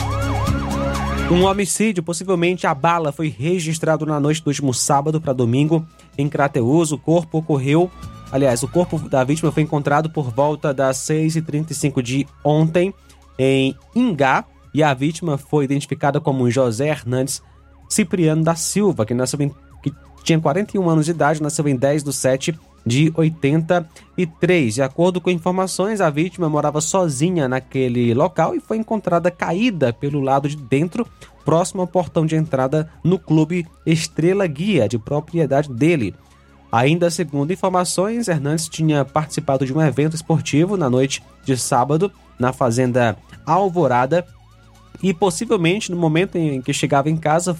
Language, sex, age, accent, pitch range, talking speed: Portuguese, male, 20-39, Brazilian, 135-170 Hz, 145 wpm